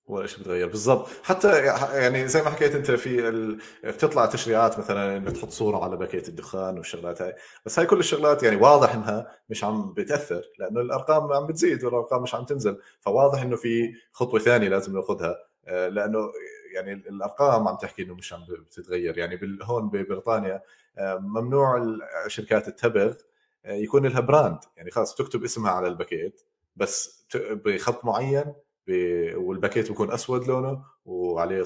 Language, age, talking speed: Arabic, 30-49, 150 wpm